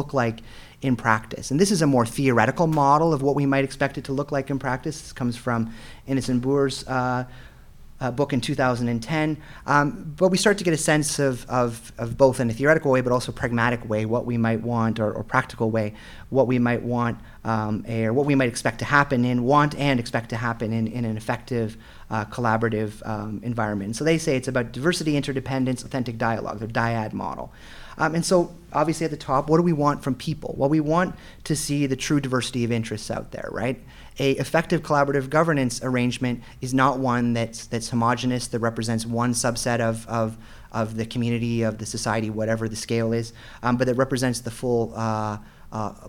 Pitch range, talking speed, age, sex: 115-145 Hz, 205 wpm, 30-49, male